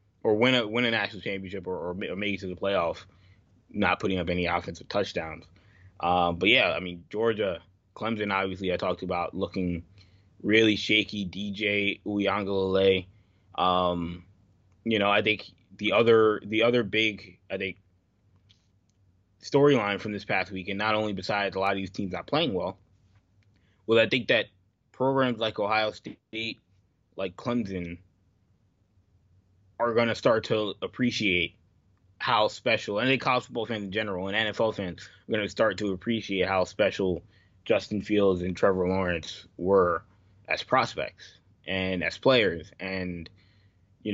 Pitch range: 95-105 Hz